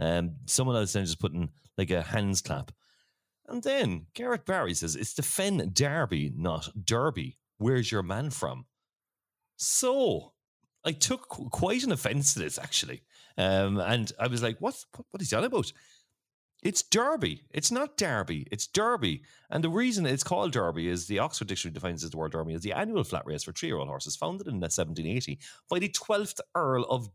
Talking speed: 190 wpm